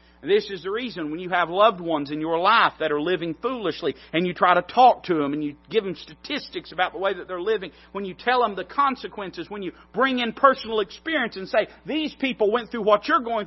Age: 40-59